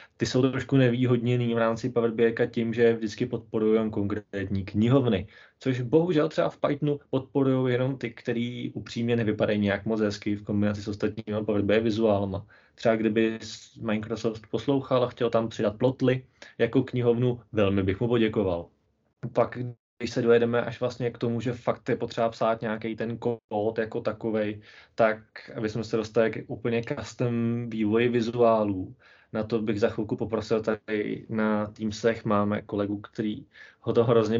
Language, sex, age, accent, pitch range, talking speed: Czech, male, 20-39, native, 105-120 Hz, 160 wpm